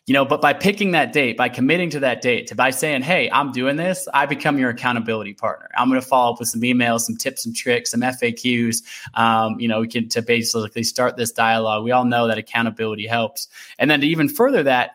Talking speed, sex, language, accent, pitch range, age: 235 wpm, male, English, American, 120-145 Hz, 20-39